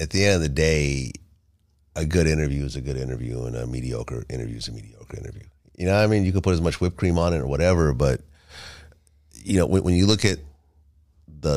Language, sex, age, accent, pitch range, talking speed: English, male, 30-49, American, 75-90 Hz, 240 wpm